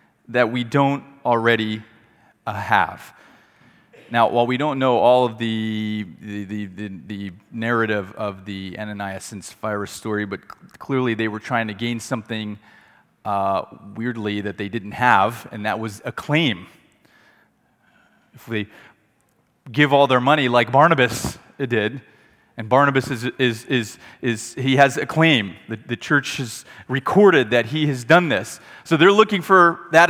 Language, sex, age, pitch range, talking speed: English, male, 30-49, 110-135 Hz, 155 wpm